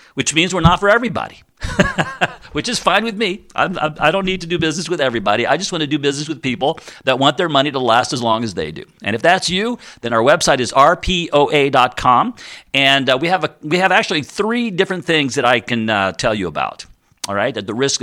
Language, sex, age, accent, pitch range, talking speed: English, male, 50-69, American, 125-160 Hz, 225 wpm